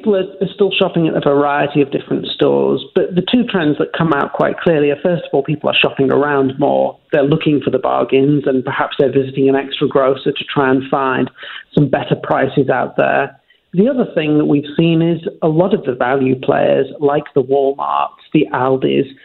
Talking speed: 210 wpm